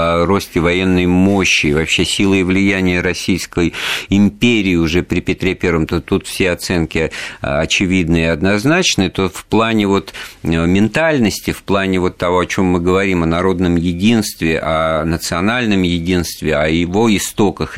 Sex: male